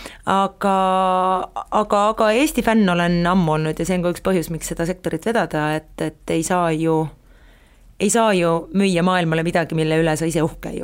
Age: 30-49